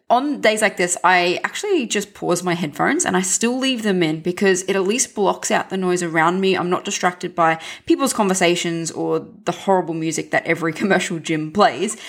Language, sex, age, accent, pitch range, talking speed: English, female, 20-39, Australian, 170-205 Hz, 205 wpm